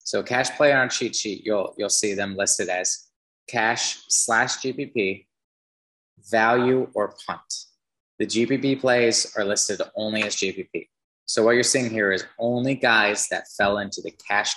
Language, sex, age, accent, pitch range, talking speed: English, male, 20-39, American, 95-115 Hz, 165 wpm